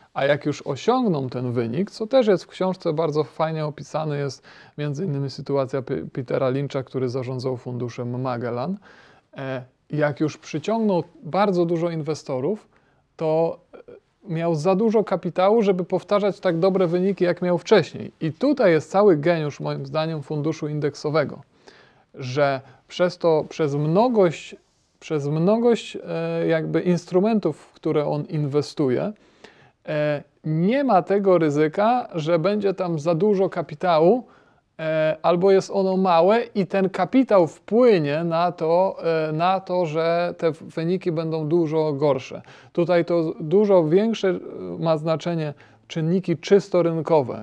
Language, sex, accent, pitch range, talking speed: Polish, male, native, 150-190 Hz, 125 wpm